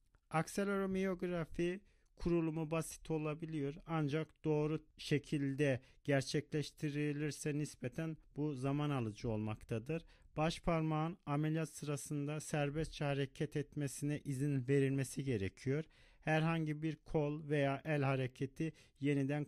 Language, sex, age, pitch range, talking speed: Turkish, male, 40-59, 135-155 Hz, 90 wpm